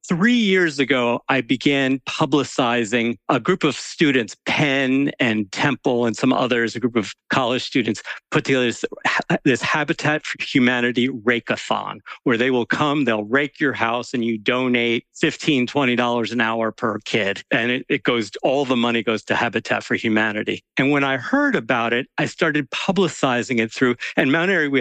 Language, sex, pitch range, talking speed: English, male, 120-155 Hz, 175 wpm